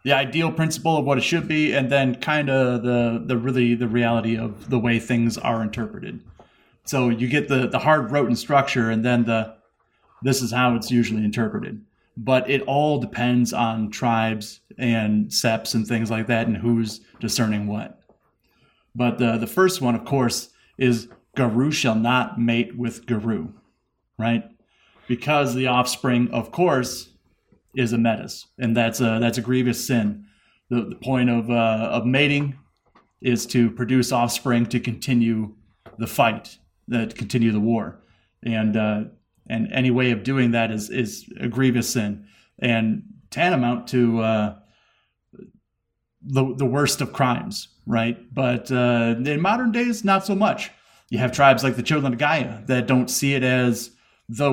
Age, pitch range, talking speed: 30-49, 115-130 Hz, 165 wpm